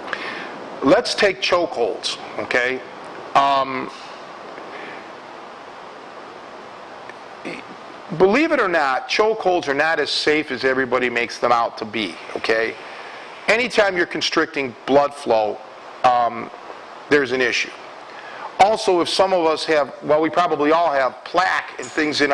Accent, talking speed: American, 125 wpm